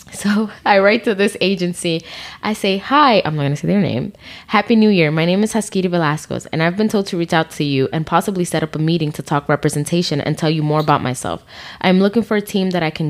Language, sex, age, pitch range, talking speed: English, female, 10-29, 145-185 Hz, 255 wpm